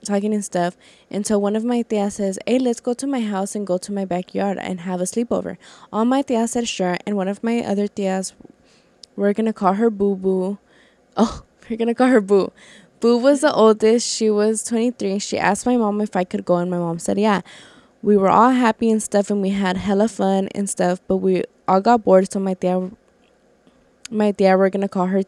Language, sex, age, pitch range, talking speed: English, female, 10-29, 190-230 Hz, 230 wpm